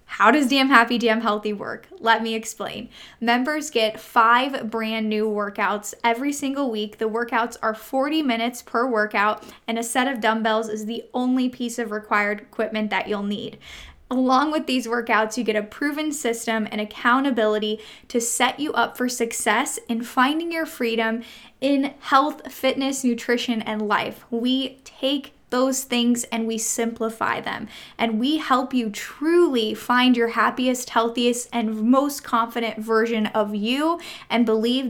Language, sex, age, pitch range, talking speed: English, female, 10-29, 220-255 Hz, 160 wpm